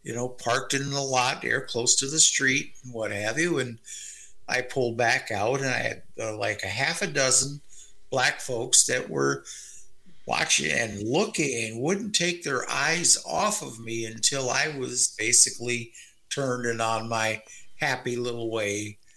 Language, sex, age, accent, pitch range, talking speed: English, male, 60-79, American, 115-165 Hz, 170 wpm